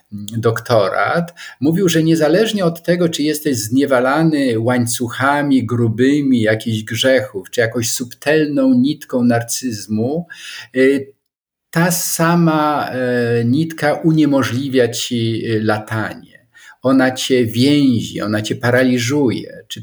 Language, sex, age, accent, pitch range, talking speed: Polish, male, 50-69, native, 115-150 Hz, 95 wpm